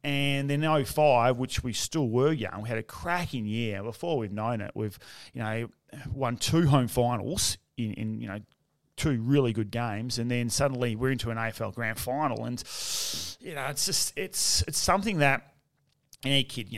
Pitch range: 110-135 Hz